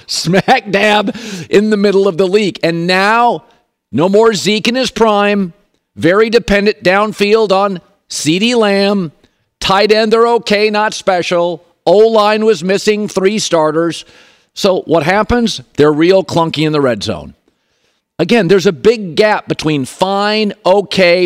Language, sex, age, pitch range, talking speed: English, male, 50-69, 160-210 Hz, 140 wpm